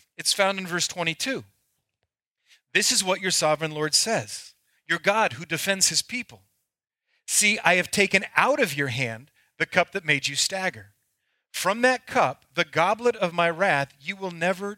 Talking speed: 175 wpm